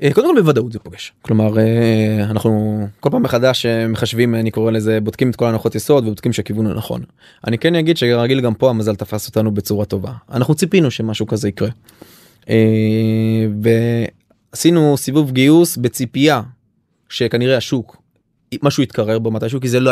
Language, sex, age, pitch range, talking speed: Hebrew, male, 20-39, 115-160 Hz, 150 wpm